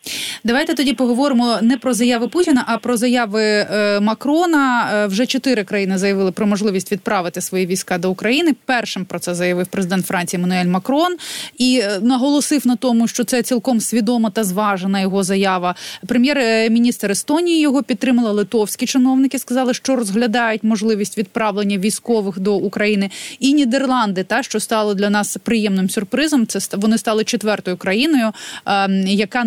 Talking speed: 145 wpm